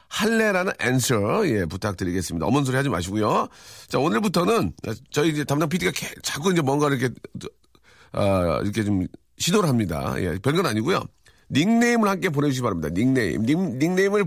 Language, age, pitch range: Korean, 40-59, 100-170 Hz